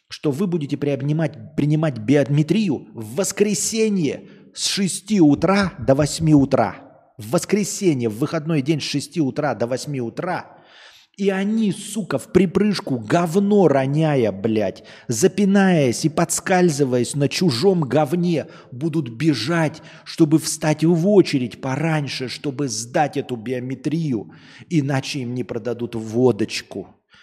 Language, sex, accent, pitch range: Russian, male, native, 120-175 Hz